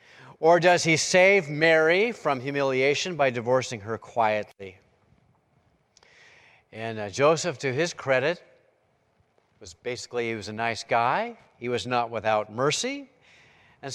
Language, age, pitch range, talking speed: English, 50-69, 115-160 Hz, 130 wpm